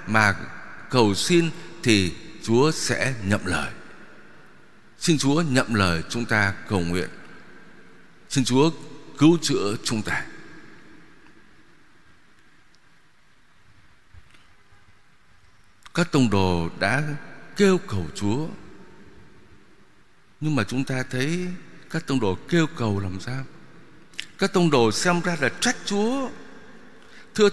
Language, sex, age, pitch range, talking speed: Vietnamese, male, 60-79, 125-190 Hz, 110 wpm